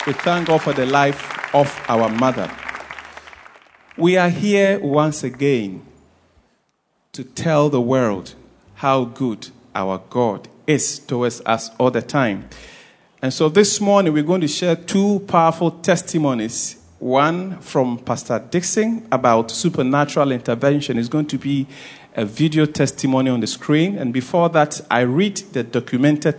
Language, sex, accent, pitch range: English, male, Nigerian, 125-155 Hz